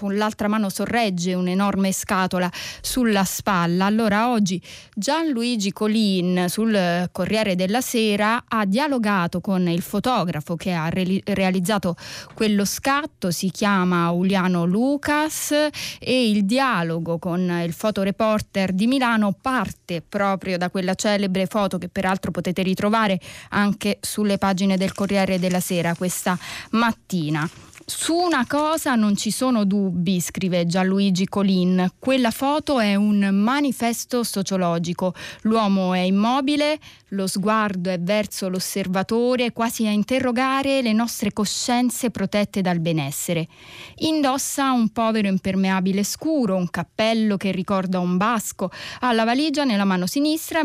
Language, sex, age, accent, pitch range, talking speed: Italian, female, 20-39, native, 185-235 Hz, 130 wpm